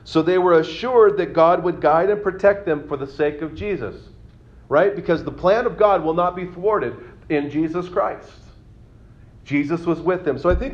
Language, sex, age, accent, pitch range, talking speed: English, male, 40-59, American, 140-190 Hz, 200 wpm